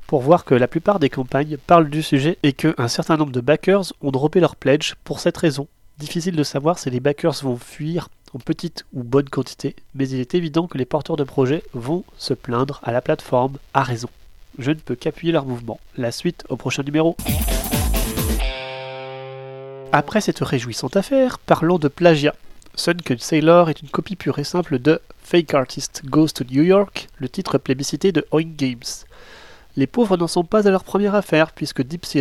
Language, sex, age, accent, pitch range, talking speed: French, male, 30-49, French, 130-165 Hz, 205 wpm